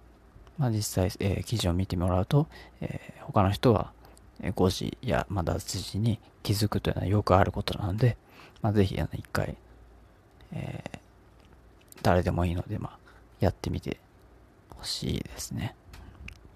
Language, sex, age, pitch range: Japanese, male, 40-59, 95-120 Hz